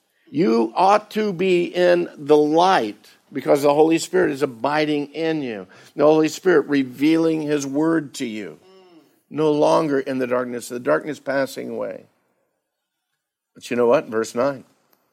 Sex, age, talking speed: male, 50-69, 150 wpm